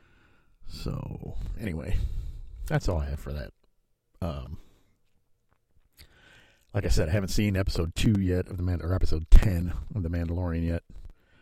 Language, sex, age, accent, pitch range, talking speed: English, male, 50-69, American, 80-95 Hz, 145 wpm